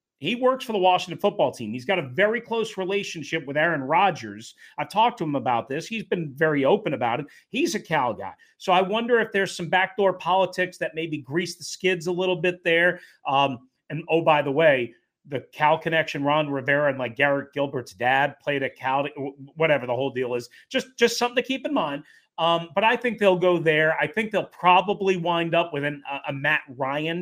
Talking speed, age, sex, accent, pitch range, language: 215 wpm, 40-59, male, American, 145-180 Hz, English